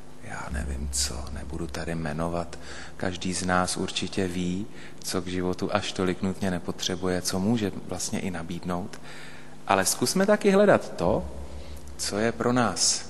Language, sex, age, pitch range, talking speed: Slovak, male, 30-49, 85-95 Hz, 145 wpm